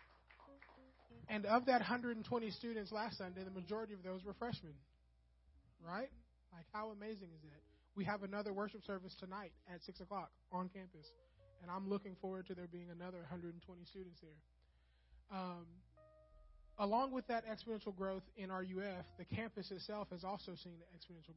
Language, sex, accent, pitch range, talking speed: English, male, American, 150-200 Hz, 165 wpm